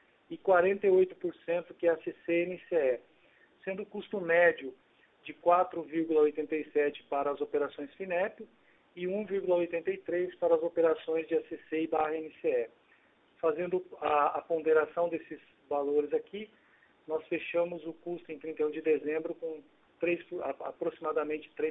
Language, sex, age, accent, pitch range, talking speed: Portuguese, male, 40-59, Brazilian, 150-175 Hz, 125 wpm